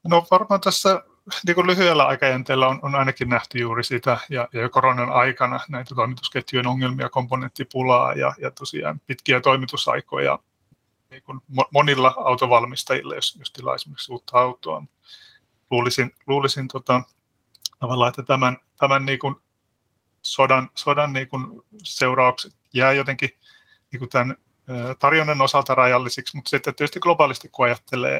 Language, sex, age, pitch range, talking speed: Finnish, male, 30-49, 125-140 Hz, 125 wpm